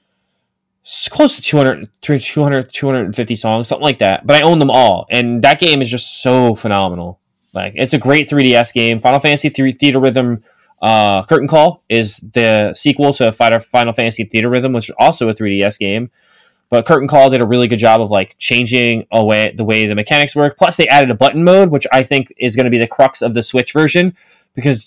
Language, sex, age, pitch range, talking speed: English, male, 20-39, 105-135 Hz, 210 wpm